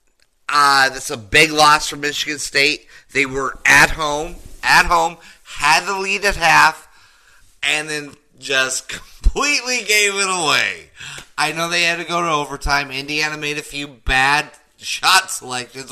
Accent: American